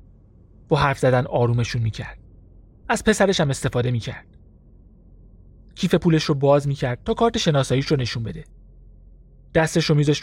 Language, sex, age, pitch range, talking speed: Persian, male, 30-49, 120-160 Hz, 140 wpm